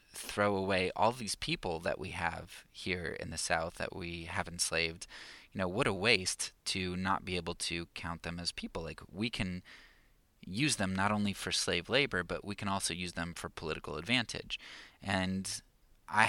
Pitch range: 85-100 Hz